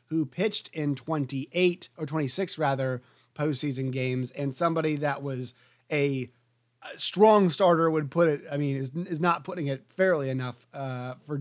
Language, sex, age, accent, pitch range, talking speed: English, male, 30-49, American, 130-160 Hz, 160 wpm